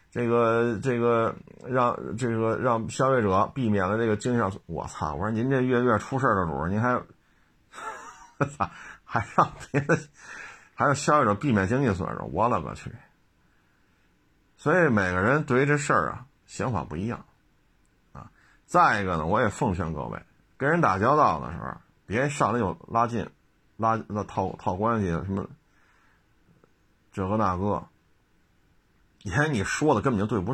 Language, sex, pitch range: Chinese, male, 95-130 Hz